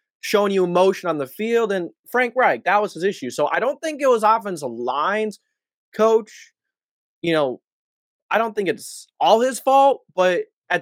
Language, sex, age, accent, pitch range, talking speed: English, male, 20-39, American, 165-235 Hz, 185 wpm